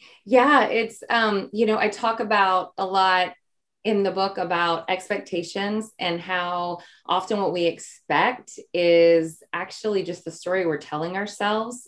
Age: 20-39